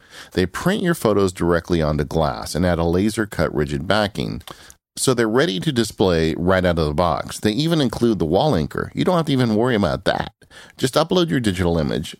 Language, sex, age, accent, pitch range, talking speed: English, male, 40-59, American, 80-110 Hz, 205 wpm